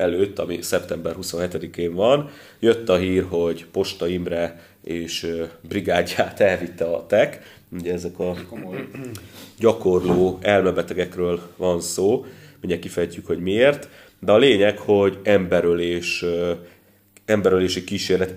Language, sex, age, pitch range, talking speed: Hungarian, male, 30-49, 85-100 Hz, 110 wpm